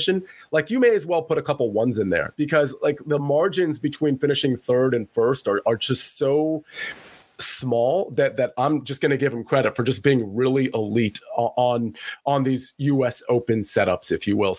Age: 30-49